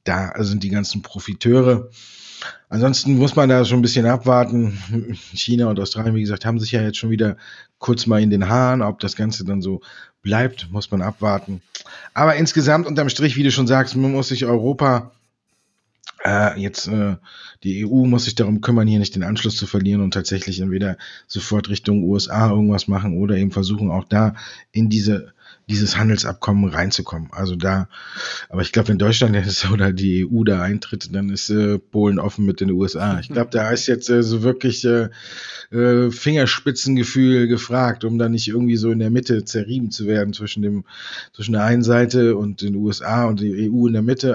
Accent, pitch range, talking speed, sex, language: German, 100-120 Hz, 190 wpm, male, German